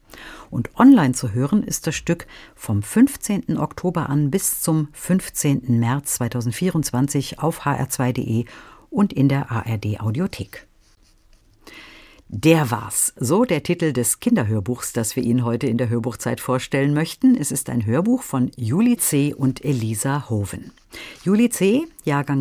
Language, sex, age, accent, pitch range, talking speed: German, female, 50-69, German, 120-170 Hz, 135 wpm